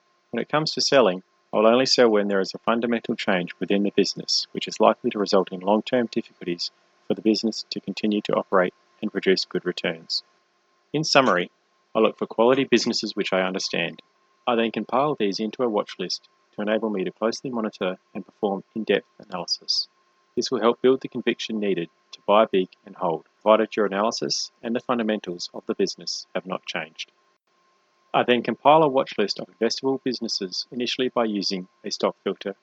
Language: English